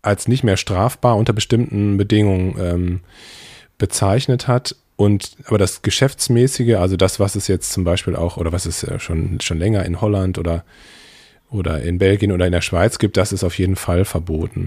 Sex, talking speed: male, 185 wpm